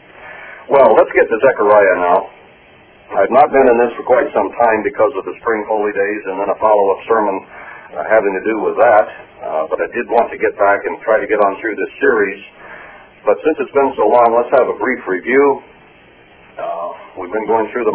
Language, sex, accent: English, male, American